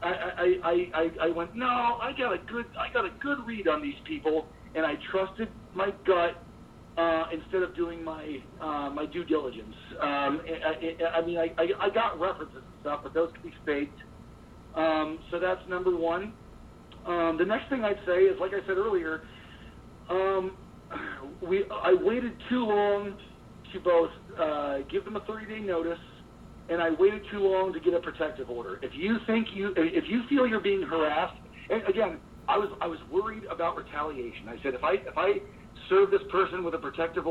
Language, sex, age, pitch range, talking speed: English, male, 40-59, 160-210 Hz, 180 wpm